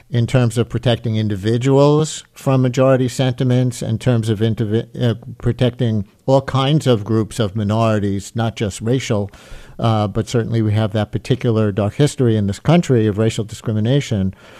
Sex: male